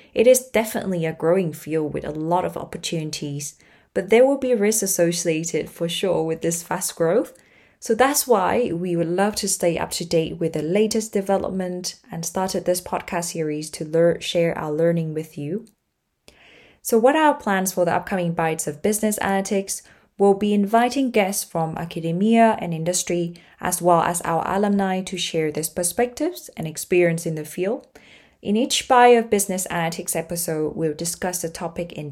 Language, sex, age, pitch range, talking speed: English, female, 20-39, 165-210 Hz, 175 wpm